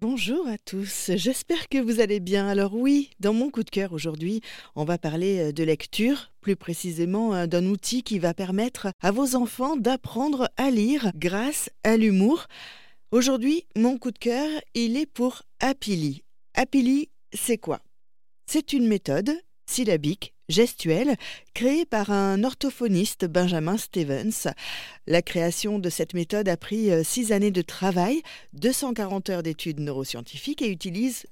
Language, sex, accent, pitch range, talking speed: French, female, French, 175-245 Hz, 150 wpm